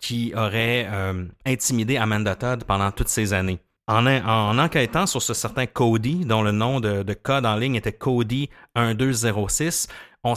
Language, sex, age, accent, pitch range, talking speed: French, male, 30-49, Canadian, 100-125 Hz, 170 wpm